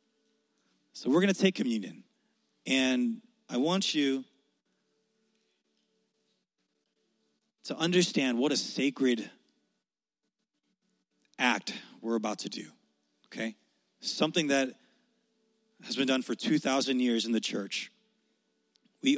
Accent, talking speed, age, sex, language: American, 105 wpm, 30-49, male, English